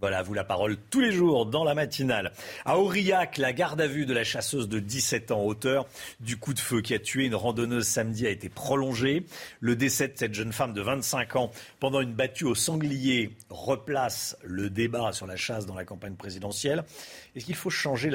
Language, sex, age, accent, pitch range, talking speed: French, male, 40-59, French, 115-170 Hz, 215 wpm